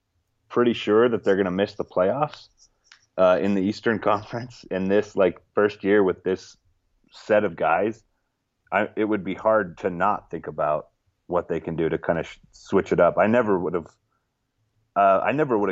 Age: 30-49